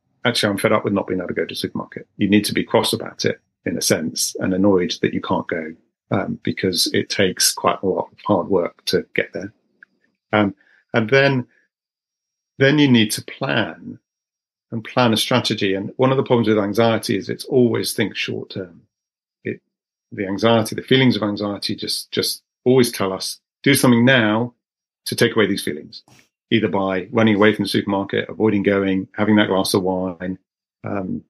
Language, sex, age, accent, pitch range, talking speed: English, male, 40-59, British, 100-115 Hz, 195 wpm